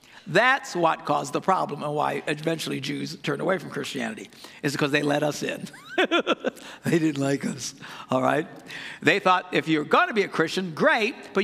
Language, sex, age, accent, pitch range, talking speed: English, male, 60-79, American, 145-200 Hz, 190 wpm